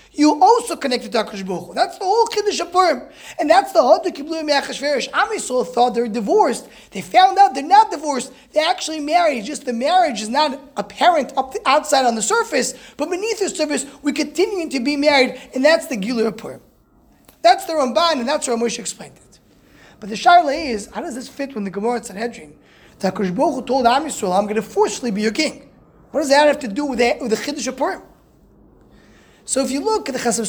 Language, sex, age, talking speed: English, male, 20-39, 205 wpm